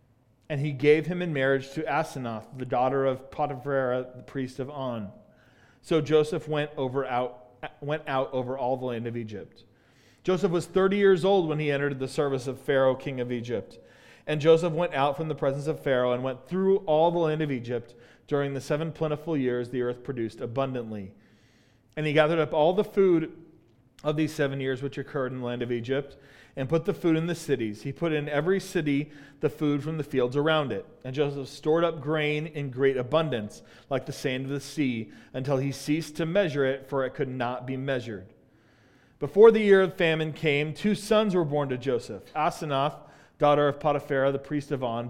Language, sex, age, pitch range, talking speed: English, male, 40-59, 125-155 Hz, 205 wpm